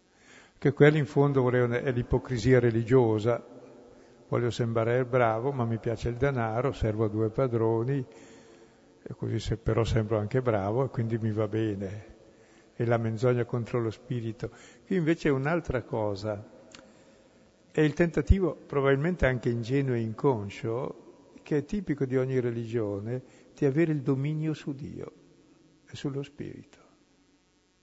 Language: Italian